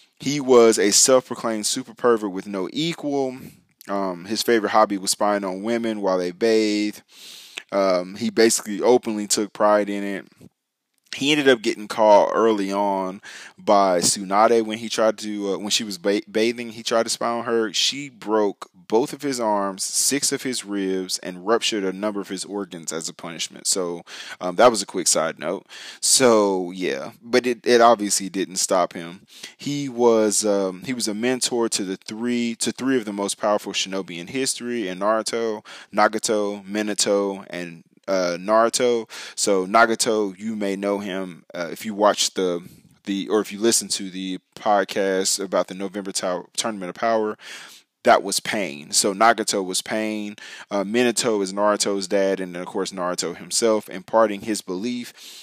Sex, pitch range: male, 95-115 Hz